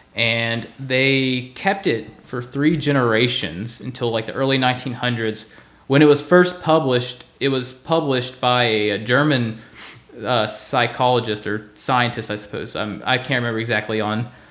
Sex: male